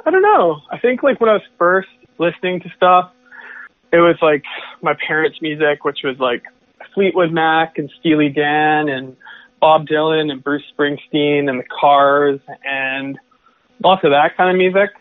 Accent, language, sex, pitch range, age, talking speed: American, English, male, 145-170 Hz, 20-39, 170 wpm